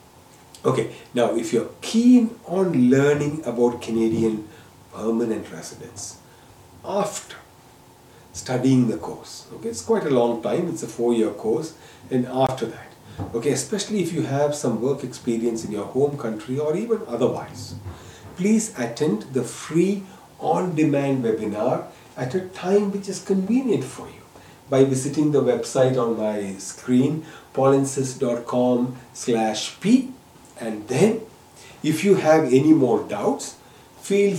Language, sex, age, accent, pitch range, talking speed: English, male, 40-59, Indian, 120-175 Hz, 130 wpm